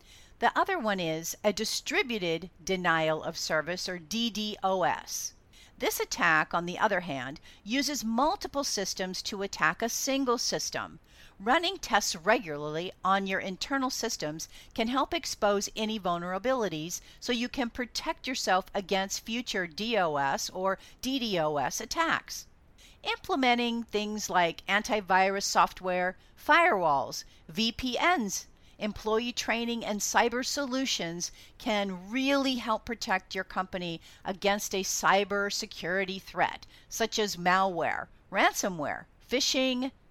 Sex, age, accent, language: female, 50-69, American, English